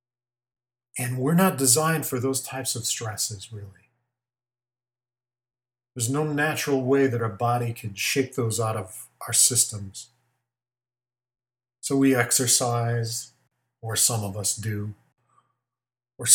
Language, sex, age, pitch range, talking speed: English, male, 40-59, 110-125 Hz, 120 wpm